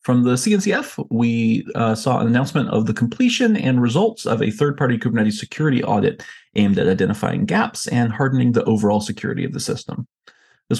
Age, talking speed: 30-49, 185 wpm